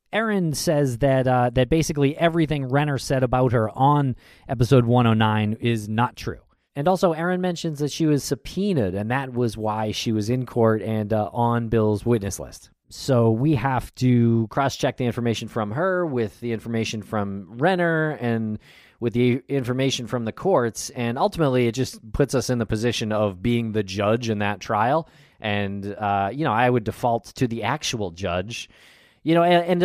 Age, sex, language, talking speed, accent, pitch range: 20-39, male, English, 185 wpm, American, 105-135 Hz